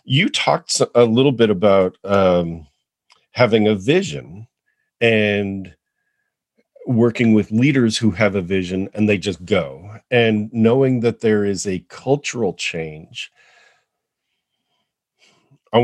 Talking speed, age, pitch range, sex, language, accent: 115 wpm, 40-59, 90-115 Hz, male, English, American